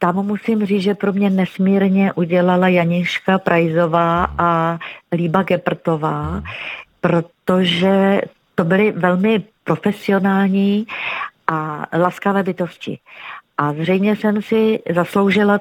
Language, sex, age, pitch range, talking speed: Czech, female, 50-69, 165-190 Hz, 100 wpm